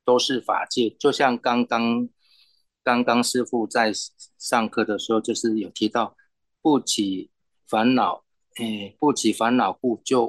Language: Chinese